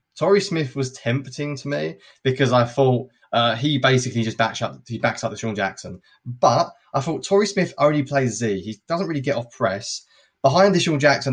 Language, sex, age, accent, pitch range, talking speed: English, male, 20-39, British, 110-140 Hz, 190 wpm